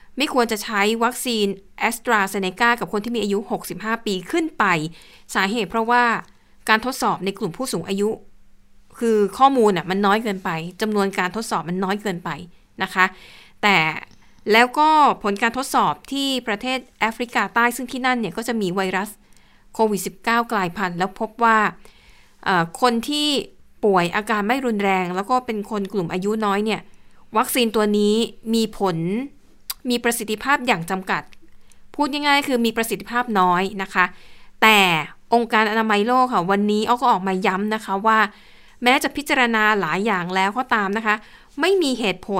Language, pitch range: Thai, 195-245 Hz